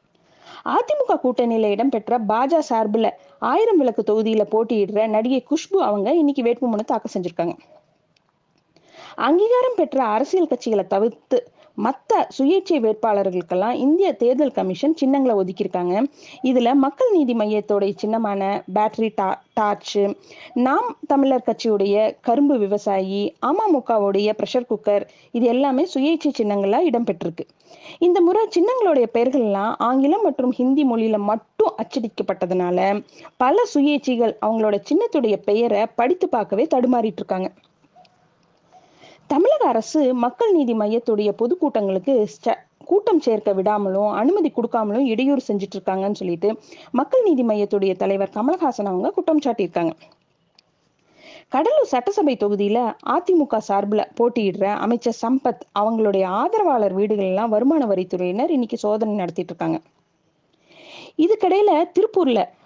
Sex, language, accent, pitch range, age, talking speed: female, Tamil, native, 205-295 Hz, 20-39, 105 wpm